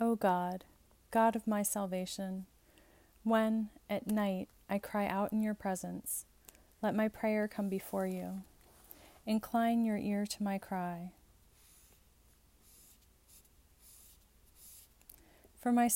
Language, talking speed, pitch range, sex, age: English, 110 wpm, 185-220 Hz, female, 30-49